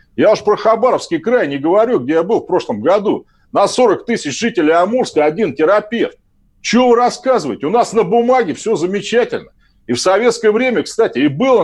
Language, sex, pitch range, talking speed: Russian, male, 210-265 Hz, 180 wpm